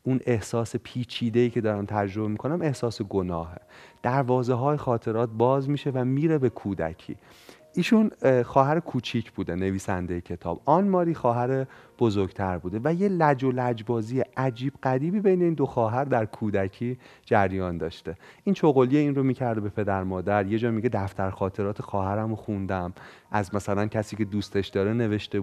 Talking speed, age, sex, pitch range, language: 155 wpm, 30-49, male, 105-140 Hz, Persian